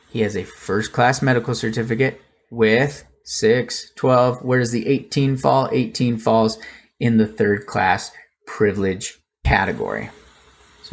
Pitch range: 110-135 Hz